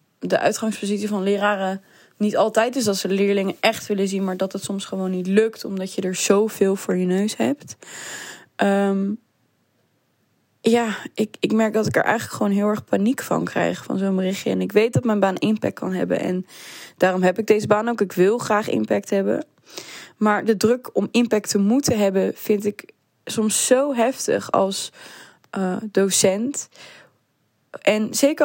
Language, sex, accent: Dutch, female, Dutch